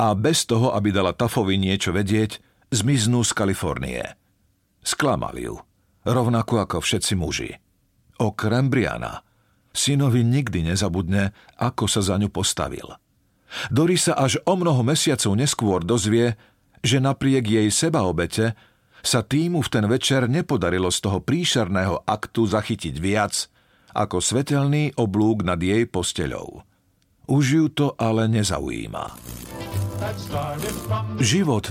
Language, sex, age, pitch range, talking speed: Slovak, male, 50-69, 95-125 Hz, 120 wpm